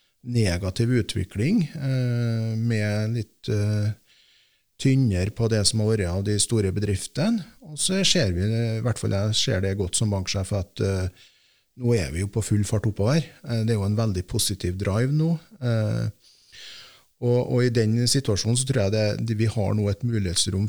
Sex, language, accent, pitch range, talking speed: male, Danish, Norwegian, 105-140 Hz, 190 wpm